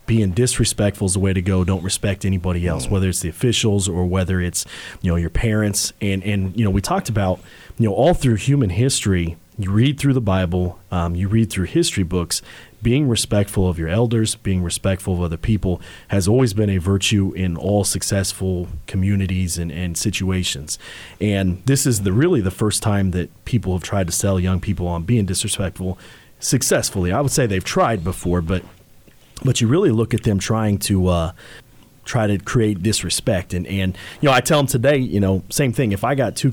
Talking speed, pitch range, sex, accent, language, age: 205 wpm, 95-120 Hz, male, American, English, 40-59